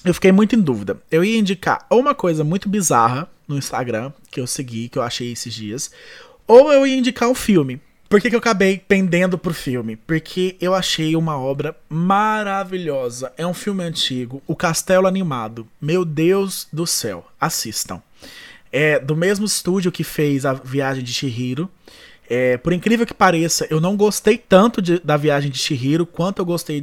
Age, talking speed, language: 20-39, 185 wpm, Portuguese